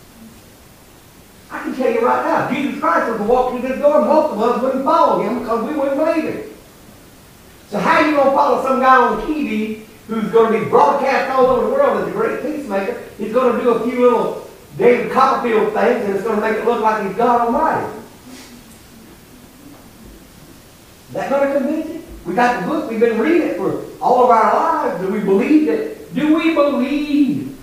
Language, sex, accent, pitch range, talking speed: English, male, American, 215-285 Hz, 210 wpm